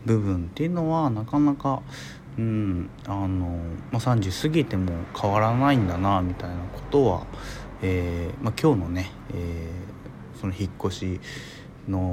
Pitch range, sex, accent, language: 95-130 Hz, male, native, Japanese